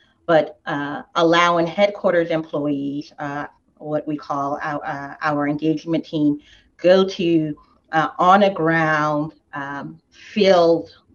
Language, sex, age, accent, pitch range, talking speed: English, female, 40-59, American, 150-185 Hz, 95 wpm